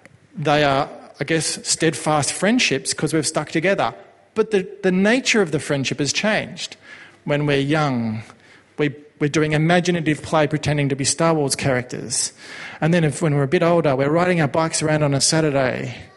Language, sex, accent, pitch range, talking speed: English, male, Australian, 135-170 Hz, 180 wpm